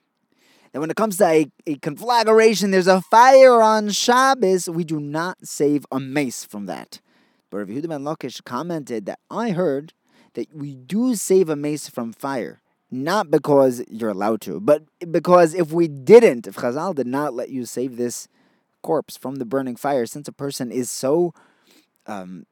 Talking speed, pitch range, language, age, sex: 175 wpm, 125-175 Hz, English, 20-39, male